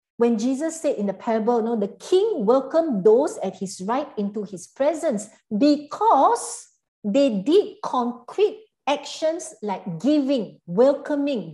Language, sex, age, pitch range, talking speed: English, female, 50-69, 220-310 Hz, 135 wpm